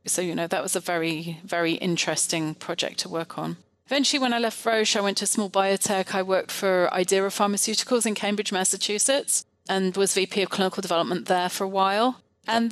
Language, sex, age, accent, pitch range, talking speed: English, female, 30-49, British, 190-225 Hz, 205 wpm